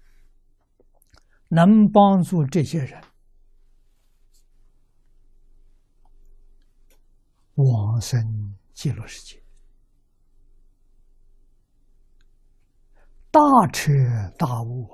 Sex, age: male, 60-79